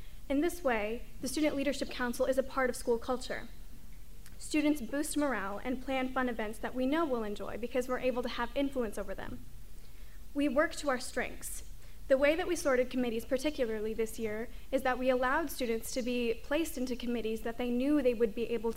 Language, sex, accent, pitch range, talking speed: English, female, American, 230-260 Hz, 205 wpm